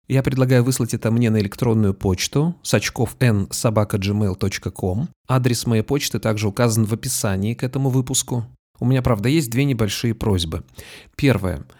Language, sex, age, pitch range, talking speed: Russian, male, 30-49, 105-130 Hz, 135 wpm